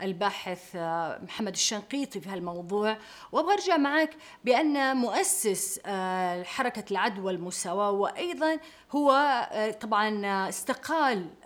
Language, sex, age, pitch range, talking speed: Arabic, female, 30-49, 190-260 Hz, 85 wpm